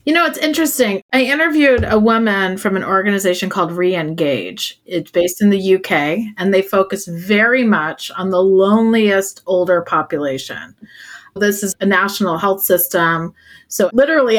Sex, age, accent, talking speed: female, 40-59, American, 150 wpm